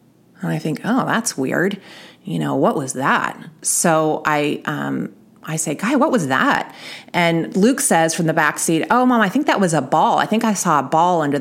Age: 30-49